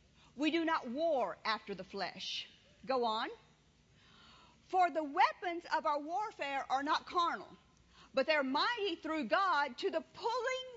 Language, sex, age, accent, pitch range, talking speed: English, female, 50-69, American, 300-405 Hz, 145 wpm